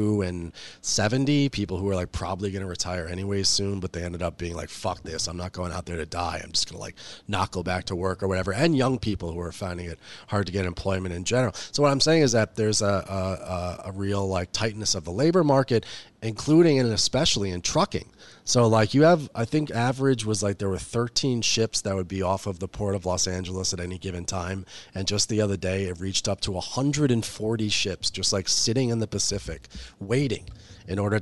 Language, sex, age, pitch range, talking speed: English, male, 30-49, 95-120 Hz, 235 wpm